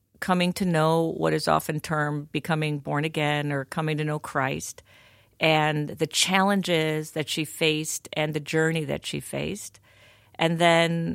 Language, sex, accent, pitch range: English, female, American, 140-170 Hz